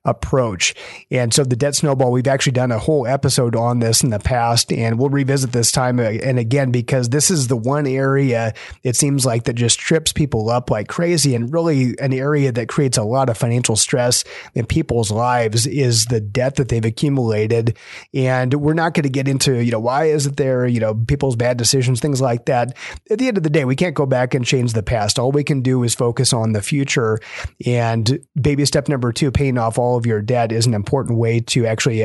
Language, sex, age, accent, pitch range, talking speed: English, male, 30-49, American, 115-140 Hz, 225 wpm